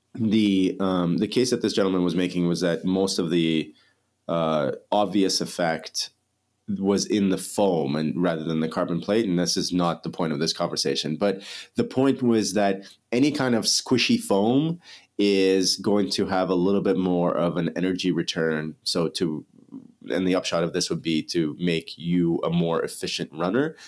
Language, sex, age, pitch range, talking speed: English, male, 30-49, 85-105 Hz, 185 wpm